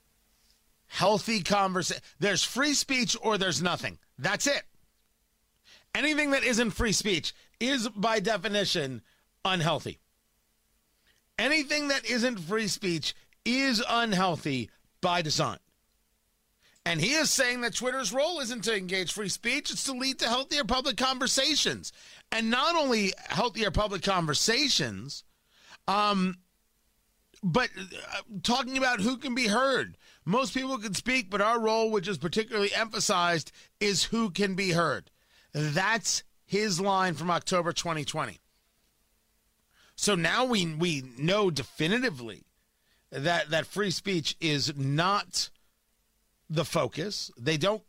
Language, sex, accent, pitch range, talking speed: English, male, American, 175-245 Hz, 125 wpm